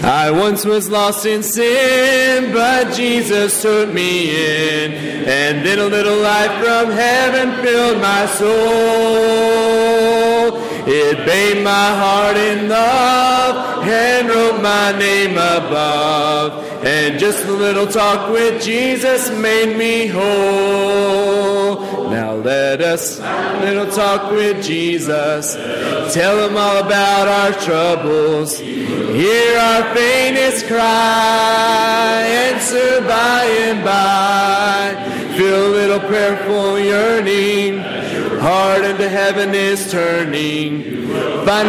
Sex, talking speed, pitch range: male, 110 wpm, 195-225 Hz